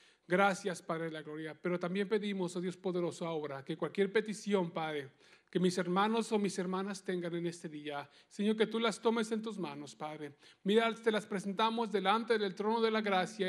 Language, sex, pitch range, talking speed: English, male, 210-285 Hz, 195 wpm